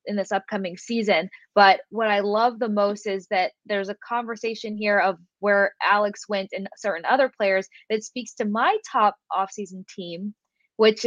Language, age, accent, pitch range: English, 20-39, American, 195-230 Hz